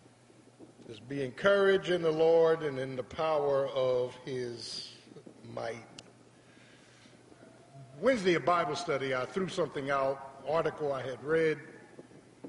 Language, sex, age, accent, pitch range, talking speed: English, male, 50-69, American, 125-155 Hz, 125 wpm